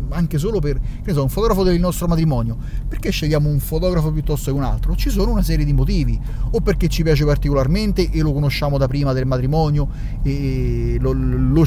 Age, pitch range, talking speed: 30-49, 135-180 Hz, 195 wpm